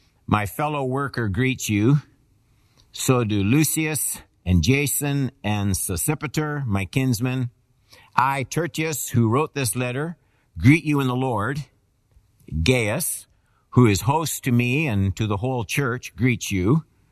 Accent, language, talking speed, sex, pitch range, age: American, English, 135 wpm, male, 105-135 Hz, 60-79